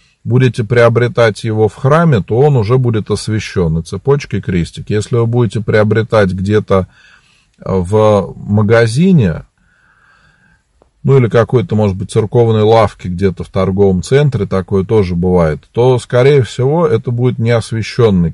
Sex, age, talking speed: male, 40-59, 135 wpm